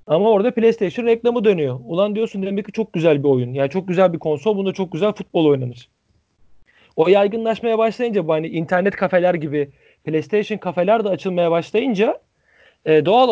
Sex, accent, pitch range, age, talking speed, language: male, native, 155-215 Hz, 40-59, 175 wpm, Turkish